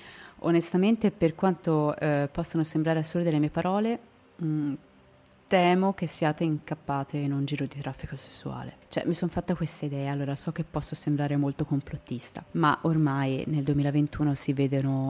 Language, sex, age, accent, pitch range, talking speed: Italian, female, 30-49, native, 145-165 Hz, 160 wpm